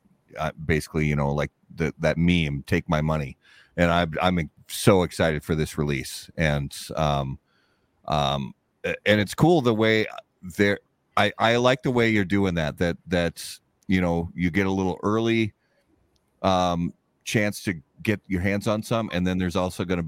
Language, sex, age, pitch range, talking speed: English, male, 30-49, 80-100 Hz, 175 wpm